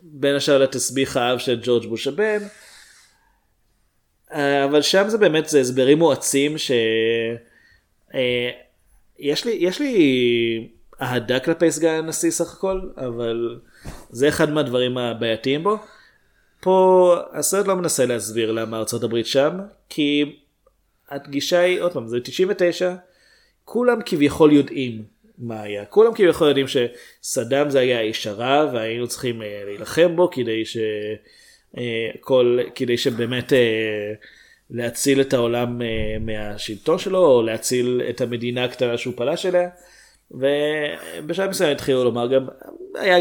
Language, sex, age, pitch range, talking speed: Hebrew, male, 20-39, 120-160 Hz, 120 wpm